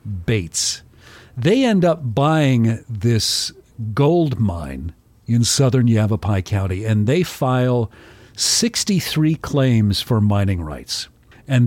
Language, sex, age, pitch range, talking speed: English, male, 50-69, 105-135 Hz, 110 wpm